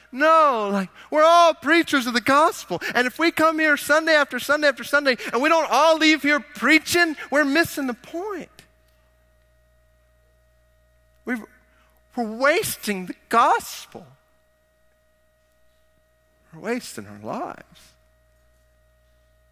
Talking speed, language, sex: 115 wpm, English, male